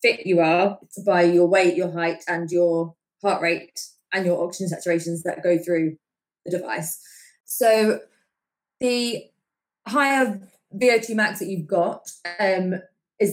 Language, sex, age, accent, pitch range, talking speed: English, female, 20-39, British, 175-200 Hz, 145 wpm